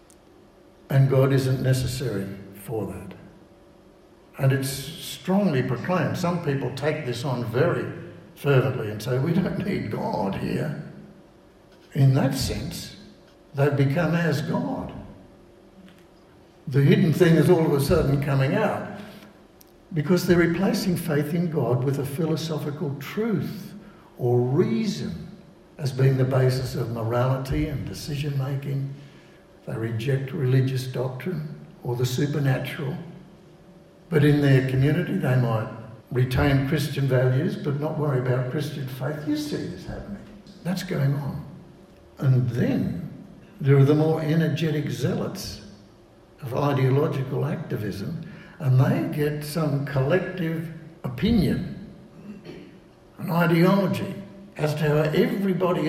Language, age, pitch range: English, 60-79, 135-180 Hz